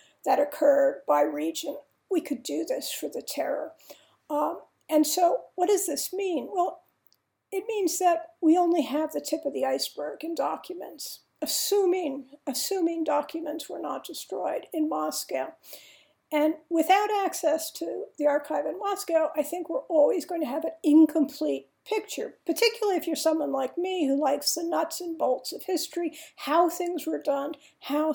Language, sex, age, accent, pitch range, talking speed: English, female, 50-69, American, 295-360 Hz, 165 wpm